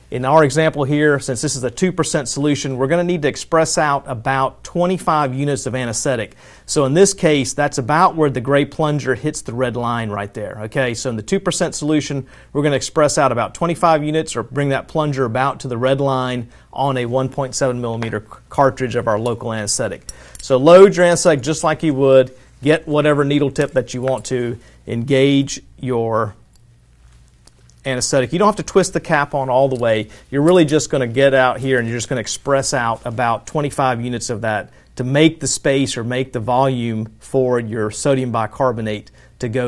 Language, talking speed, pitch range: English, 200 wpm, 120-150 Hz